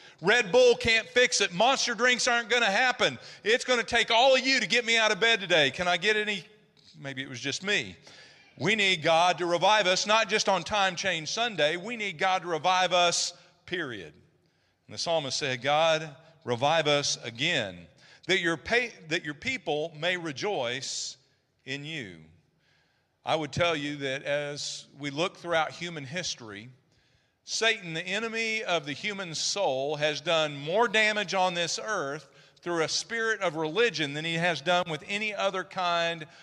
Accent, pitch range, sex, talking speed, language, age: American, 145-210 Hz, male, 175 wpm, English, 40-59